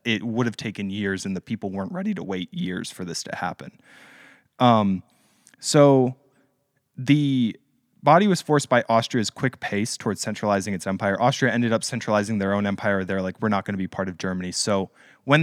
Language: English